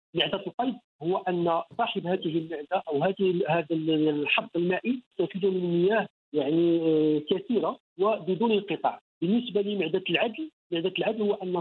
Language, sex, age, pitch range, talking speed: Arabic, male, 50-69, 165-210 Hz, 135 wpm